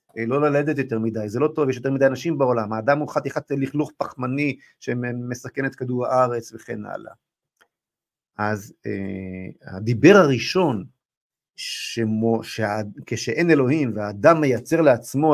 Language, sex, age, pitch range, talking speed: Hebrew, male, 50-69, 110-145 Hz, 135 wpm